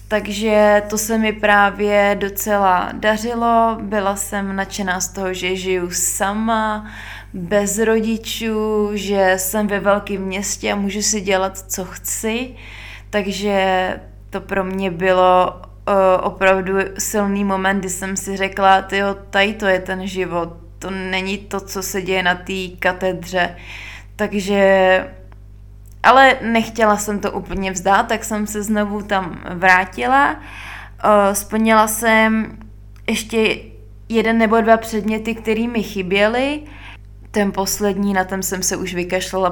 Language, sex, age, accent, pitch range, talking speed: Czech, female, 20-39, native, 185-205 Hz, 130 wpm